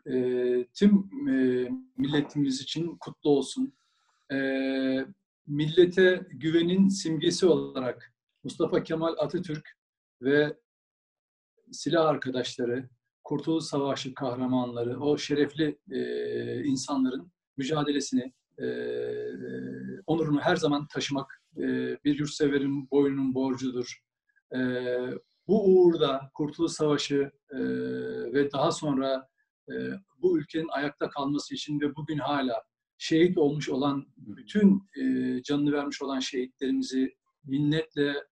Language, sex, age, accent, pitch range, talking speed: Turkish, male, 50-69, native, 130-160 Hz, 95 wpm